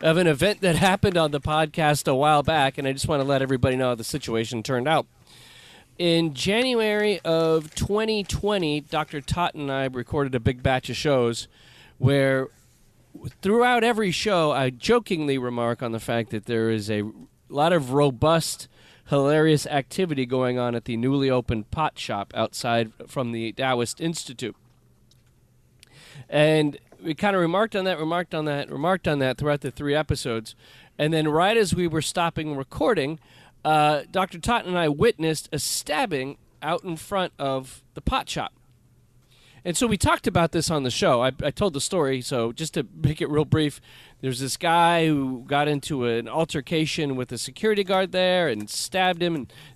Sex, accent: male, American